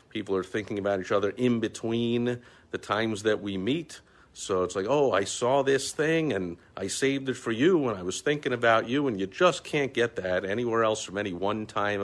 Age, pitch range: 50-69, 95-130 Hz